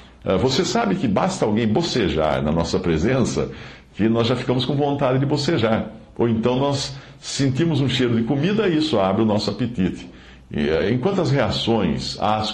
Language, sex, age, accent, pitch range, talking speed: Portuguese, male, 60-79, Brazilian, 90-125 Hz, 170 wpm